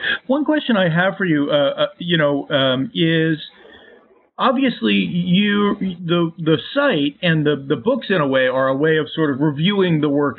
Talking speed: 190 wpm